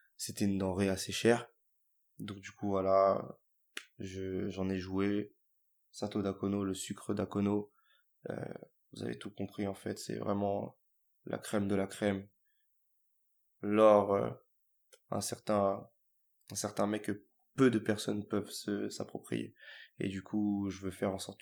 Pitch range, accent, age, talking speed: 100-105 Hz, French, 20-39, 150 wpm